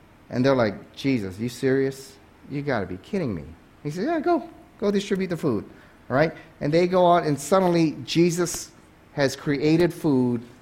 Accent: American